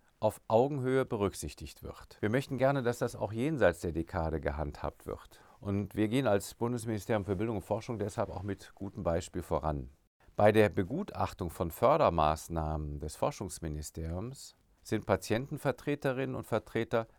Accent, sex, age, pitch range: German, male, 50-69, 90-125 Hz